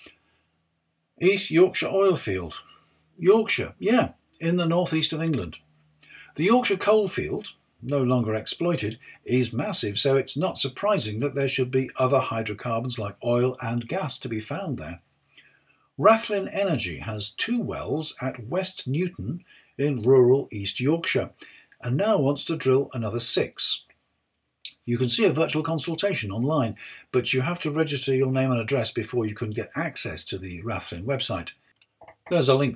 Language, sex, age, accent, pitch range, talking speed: English, male, 50-69, British, 115-160 Hz, 155 wpm